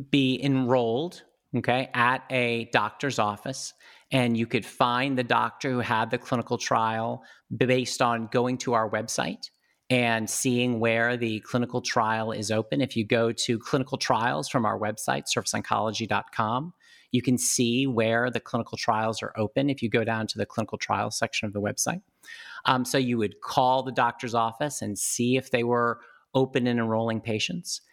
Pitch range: 115-130 Hz